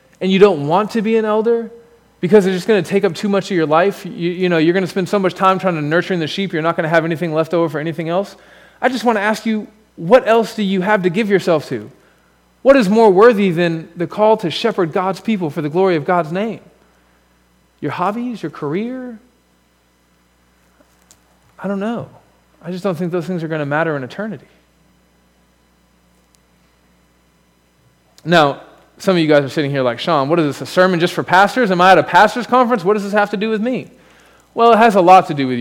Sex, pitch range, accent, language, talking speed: male, 150-205 Hz, American, English, 235 wpm